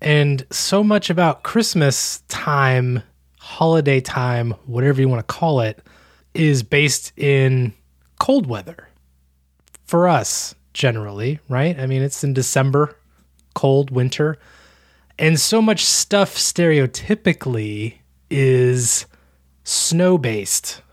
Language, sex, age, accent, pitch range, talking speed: English, male, 20-39, American, 95-145 Hz, 105 wpm